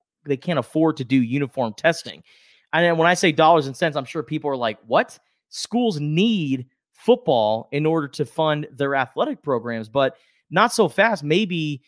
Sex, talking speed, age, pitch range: male, 180 wpm, 30-49, 125-160 Hz